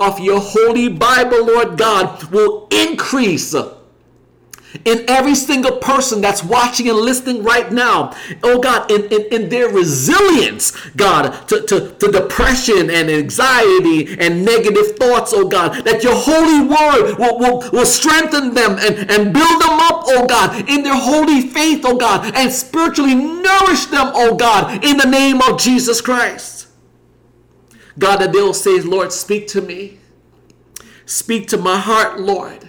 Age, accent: 50-69, American